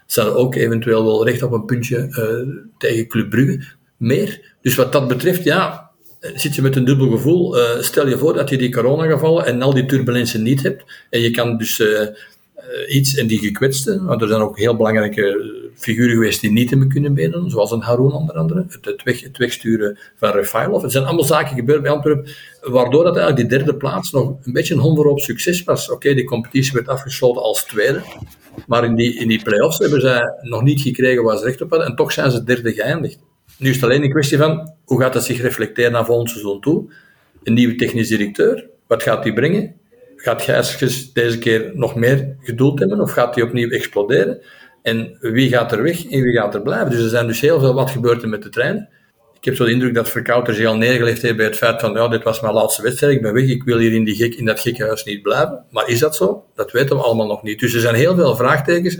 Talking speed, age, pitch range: 235 wpm, 50-69, 115-145 Hz